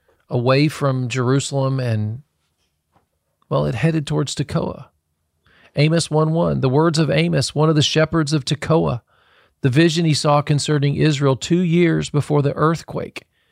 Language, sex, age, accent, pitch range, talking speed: English, male, 40-59, American, 120-155 Hz, 140 wpm